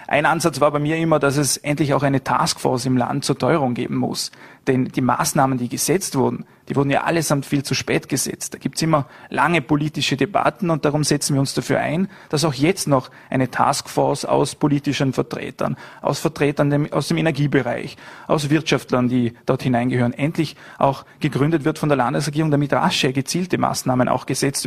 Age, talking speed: 30-49, 190 wpm